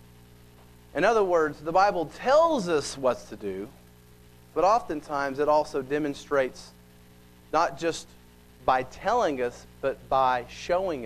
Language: English